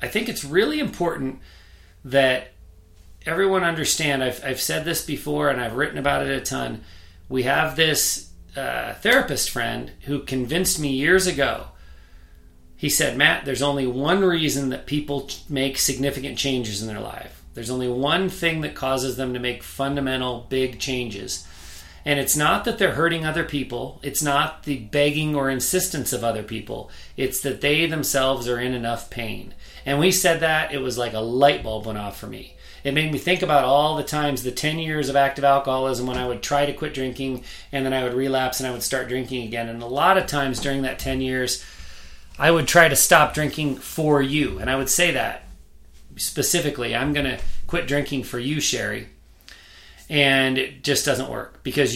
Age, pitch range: 40-59, 120-145 Hz